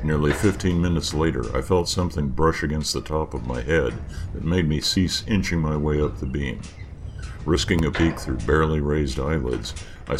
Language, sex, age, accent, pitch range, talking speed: English, male, 60-79, American, 70-85 Hz, 190 wpm